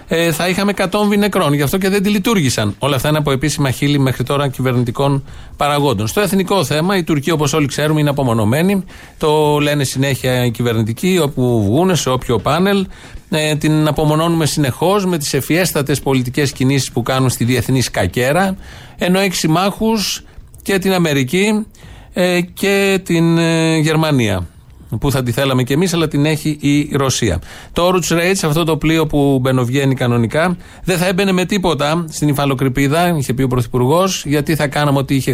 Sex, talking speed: male, 165 wpm